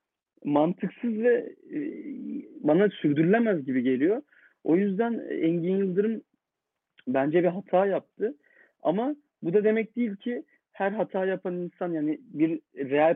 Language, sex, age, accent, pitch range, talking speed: Turkish, male, 40-59, native, 145-200 Hz, 125 wpm